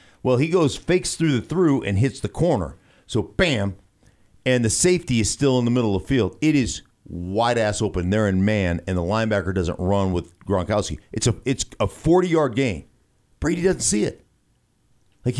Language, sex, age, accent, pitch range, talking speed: English, male, 50-69, American, 105-145 Hz, 190 wpm